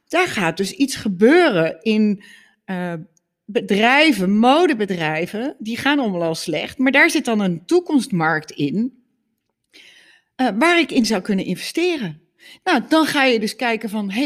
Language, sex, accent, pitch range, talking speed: Dutch, female, Dutch, 195-270 Hz, 150 wpm